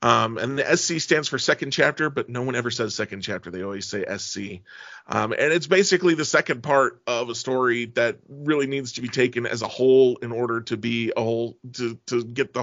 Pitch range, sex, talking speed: 120-140 Hz, male, 240 wpm